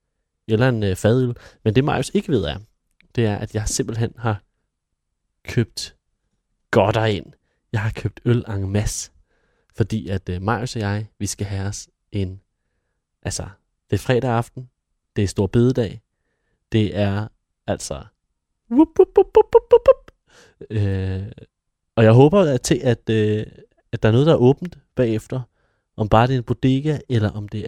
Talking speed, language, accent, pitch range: 170 wpm, Danish, native, 95-120 Hz